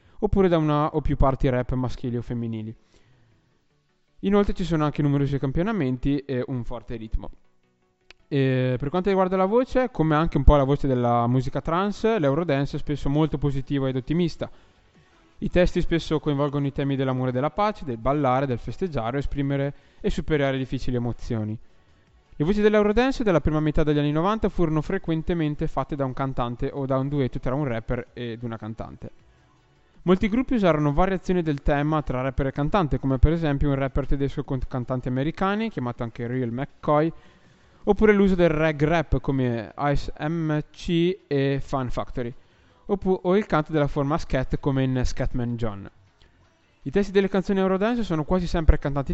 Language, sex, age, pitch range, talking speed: Italian, male, 10-29, 125-160 Hz, 170 wpm